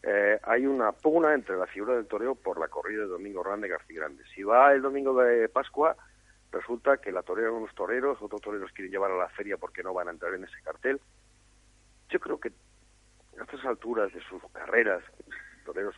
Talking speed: 210 wpm